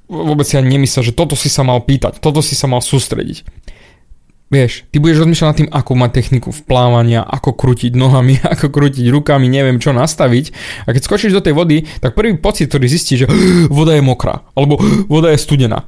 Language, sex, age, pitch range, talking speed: Slovak, male, 20-39, 125-165 Hz, 200 wpm